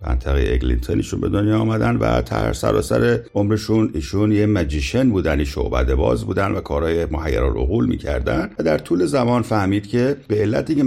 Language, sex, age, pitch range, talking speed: Persian, male, 50-69, 75-110 Hz, 170 wpm